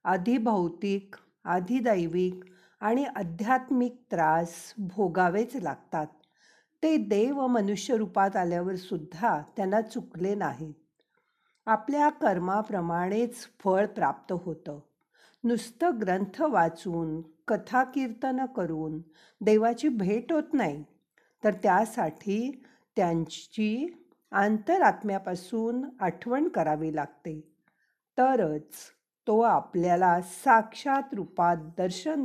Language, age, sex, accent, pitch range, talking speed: Marathi, 50-69, female, native, 175-240 Hz, 80 wpm